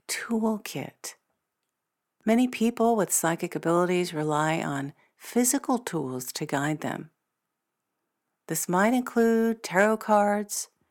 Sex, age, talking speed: female, 50-69, 100 wpm